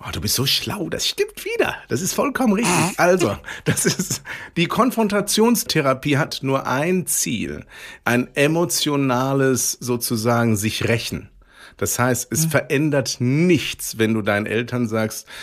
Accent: German